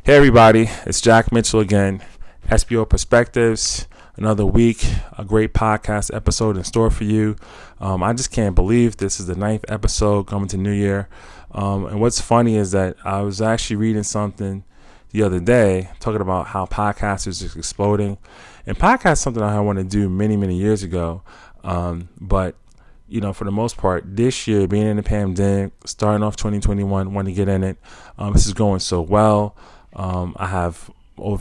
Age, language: 20-39, English